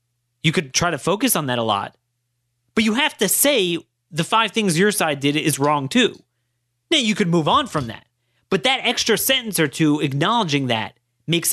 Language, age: English, 30-49